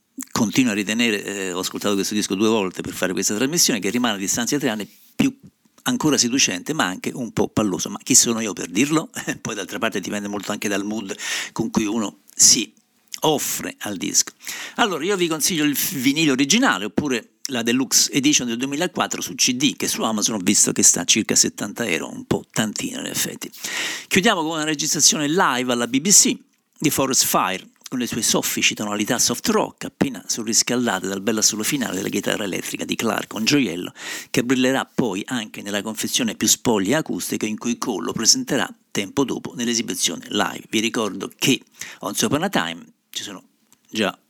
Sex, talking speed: male, 185 wpm